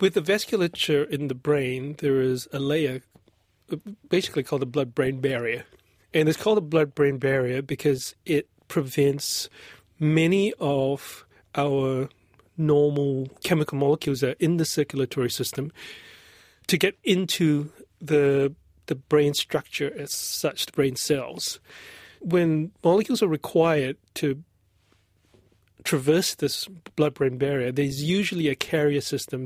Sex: male